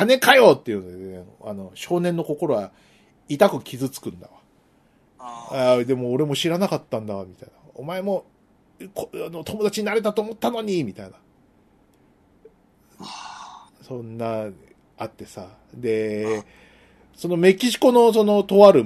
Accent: native